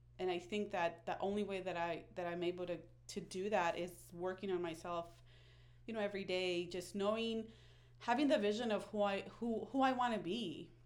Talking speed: 210 wpm